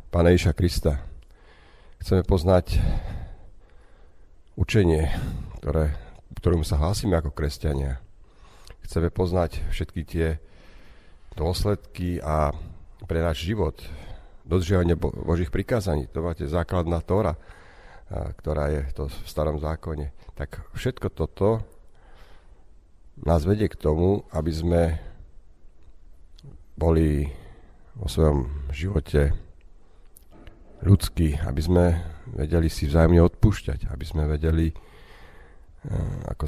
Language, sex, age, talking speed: Slovak, male, 50-69, 95 wpm